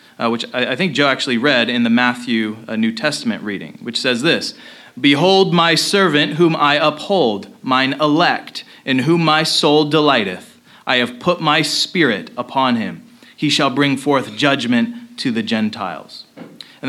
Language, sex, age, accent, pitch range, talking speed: English, male, 30-49, American, 140-190 Hz, 165 wpm